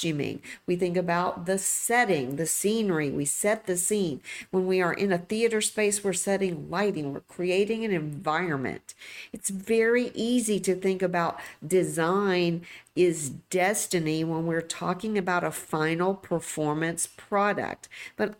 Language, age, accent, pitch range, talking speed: English, 50-69, American, 165-205 Hz, 145 wpm